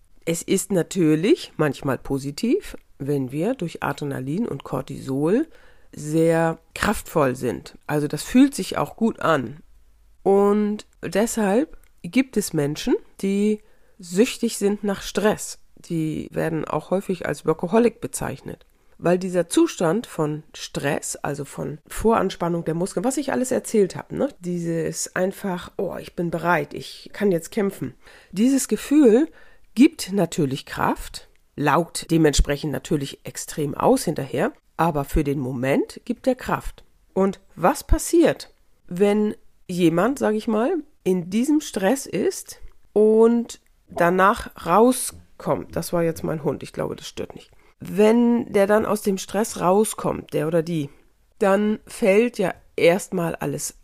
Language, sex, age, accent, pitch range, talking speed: German, female, 40-59, German, 165-230 Hz, 135 wpm